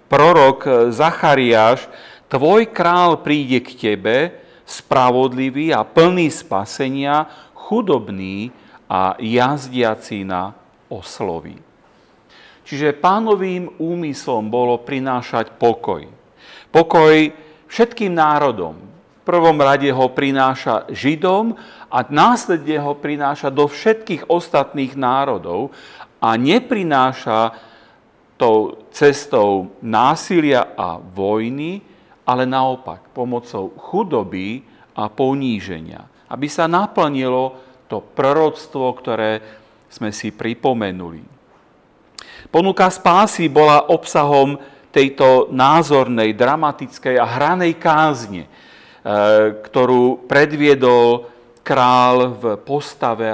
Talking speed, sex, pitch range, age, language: 85 wpm, male, 115-155 Hz, 40-59, Slovak